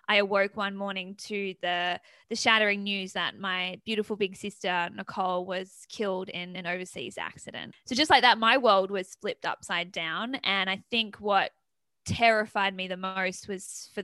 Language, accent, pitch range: English, Australian, 185-215 Hz